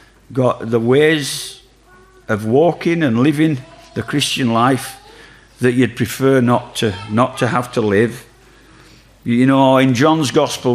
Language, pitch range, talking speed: English, 110-145 Hz, 140 wpm